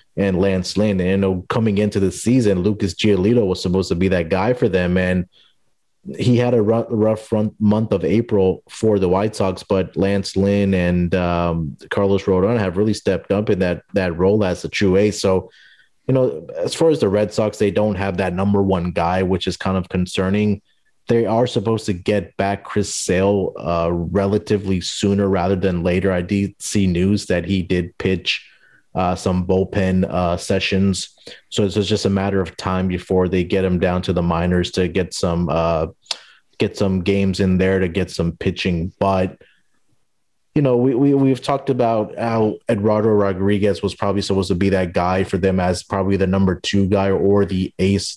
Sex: male